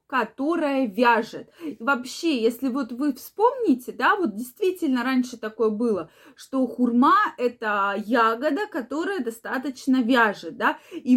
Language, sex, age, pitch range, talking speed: Russian, female, 20-39, 230-295 Hz, 120 wpm